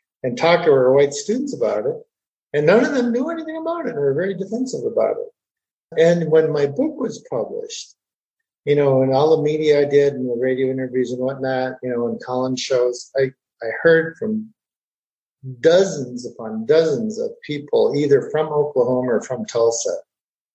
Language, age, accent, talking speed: English, 50-69, American, 180 wpm